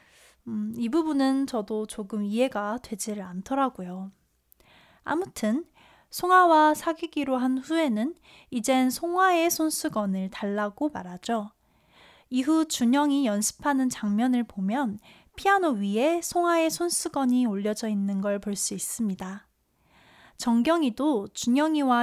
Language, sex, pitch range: Korean, female, 210-300 Hz